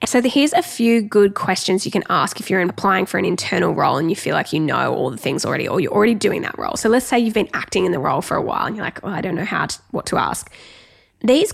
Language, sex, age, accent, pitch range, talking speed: English, female, 10-29, Australian, 190-240 Hz, 300 wpm